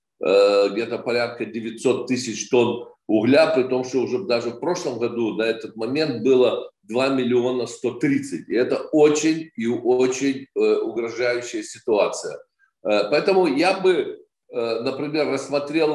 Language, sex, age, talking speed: Ukrainian, male, 50-69, 125 wpm